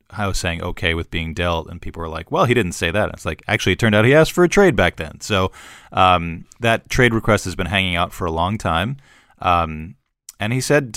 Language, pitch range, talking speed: English, 85-105 Hz, 250 wpm